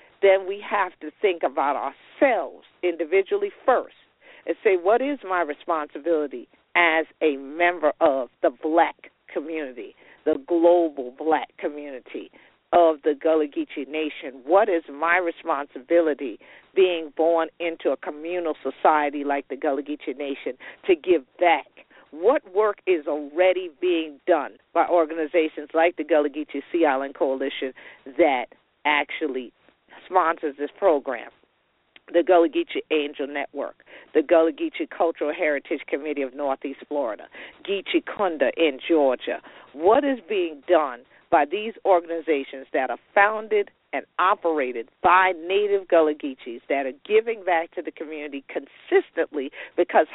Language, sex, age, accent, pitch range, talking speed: English, female, 50-69, American, 150-200 Hz, 135 wpm